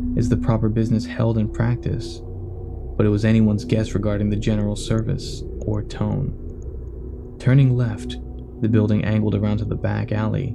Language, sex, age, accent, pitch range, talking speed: English, male, 20-39, American, 100-115 Hz, 160 wpm